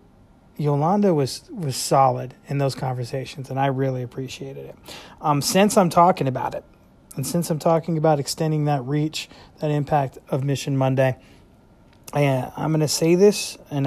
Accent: American